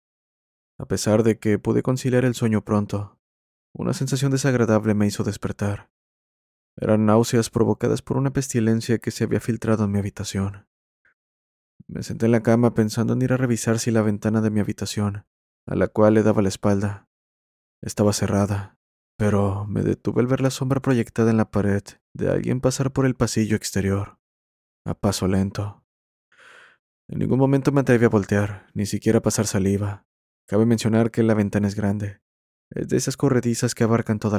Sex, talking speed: male, 175 wpm